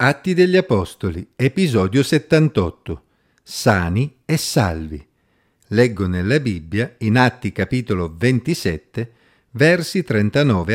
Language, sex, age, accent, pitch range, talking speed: Italian, male, 50-69, native, 105-145 Hz, 95 wpm